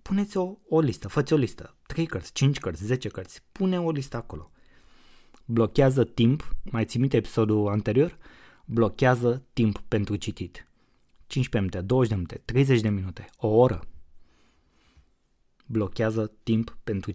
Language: Romanian